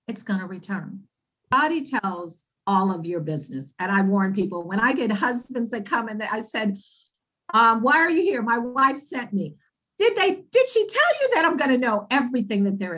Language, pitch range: English, 190-260 Hz